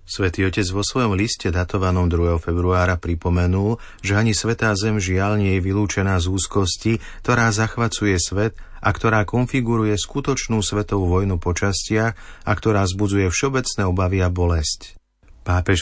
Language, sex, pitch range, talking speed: Slovak, male, 90-105 Hz, 140 wpm